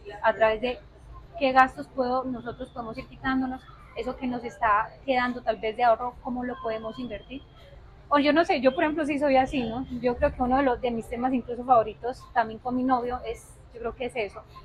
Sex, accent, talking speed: female, Colombian, 225 wpm